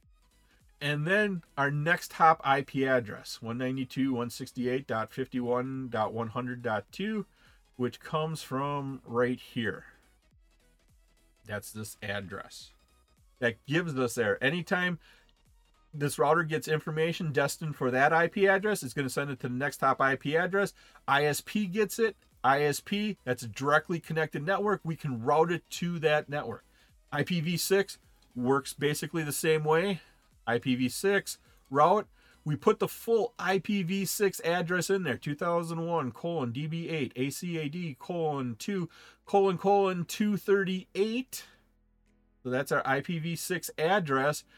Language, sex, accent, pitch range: English, male, American, 130-185 Hz